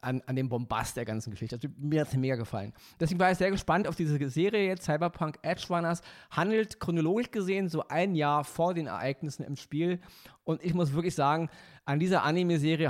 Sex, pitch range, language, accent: male, 135-170 Hz, German, German